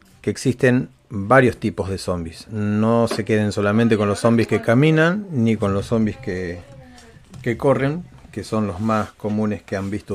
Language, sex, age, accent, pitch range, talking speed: Spanish, male, 30-49, Argentinian, 100-125 Hz, 175 wpm